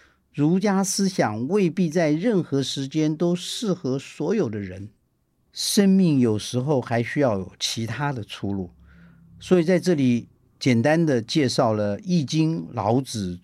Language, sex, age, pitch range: Chinese, male, 50-69, 120-185 Hz